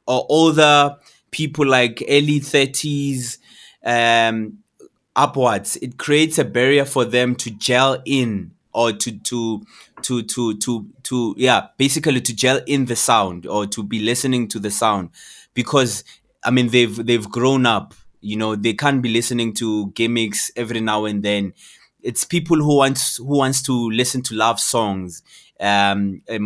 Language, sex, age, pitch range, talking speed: English, male, 20-39, 110-135 Hz, 160 wpm